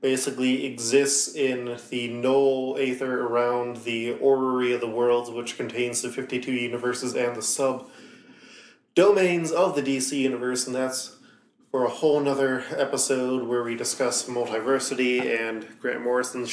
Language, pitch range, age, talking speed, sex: English, 120-140 Hz, 20-39, 140 wpm, male